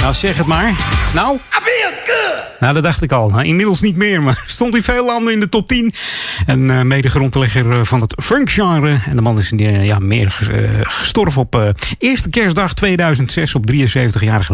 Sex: male